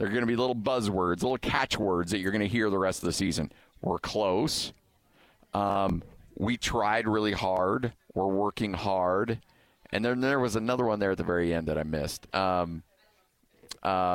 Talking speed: 190 wpm